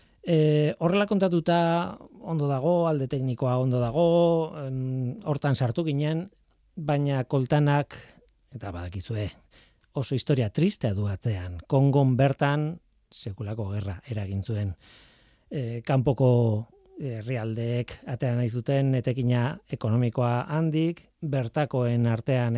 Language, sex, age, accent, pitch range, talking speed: Spanish, male, 40-59, Spanish, 115-145 Hz, 105 wpm